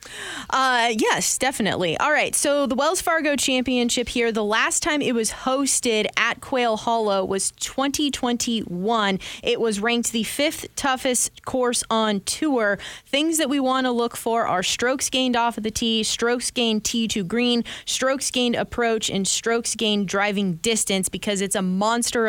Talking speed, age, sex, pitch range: 165 wpm, 20-39, female, 205-245 Hz